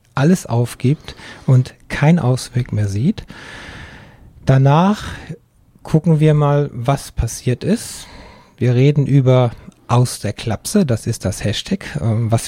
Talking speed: 120 wpm